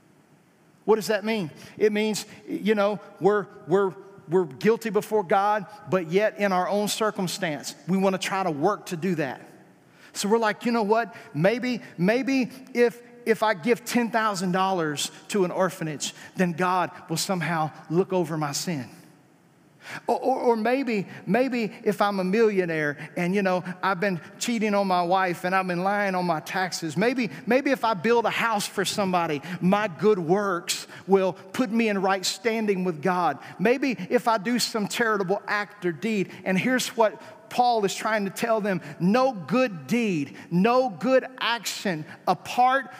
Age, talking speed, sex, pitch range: 40-59, 170 wpm, male, 185-235 Hz